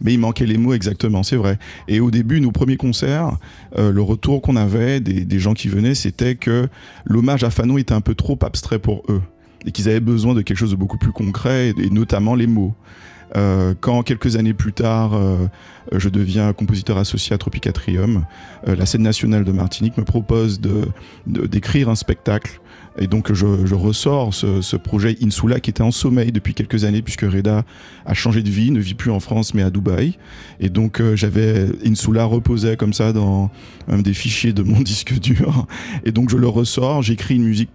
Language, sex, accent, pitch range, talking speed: French, male, French, 95-115 Hz, 205 wpm